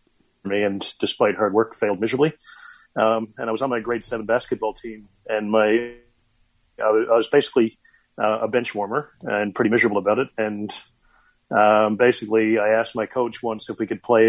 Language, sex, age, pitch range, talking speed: English, male, 40-59, 110-120 Hz, 180 wpm